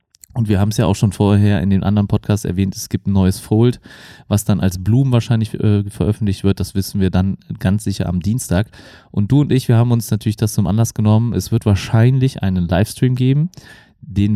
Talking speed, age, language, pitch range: 220 wpm, 30-49, German, 95-115 Hz